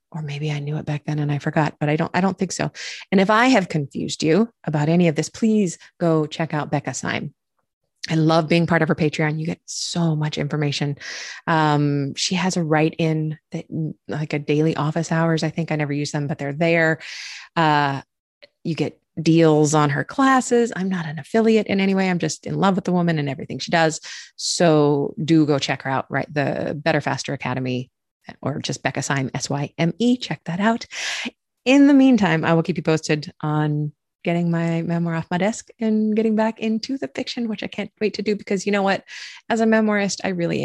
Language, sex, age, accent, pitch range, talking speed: English, female, 30-49, American, 150-195 Hz, 220 wpm